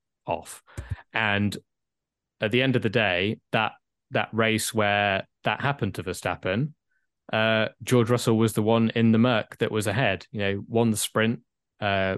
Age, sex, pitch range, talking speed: 20-39, male, 100-115 Hz, 170 wpm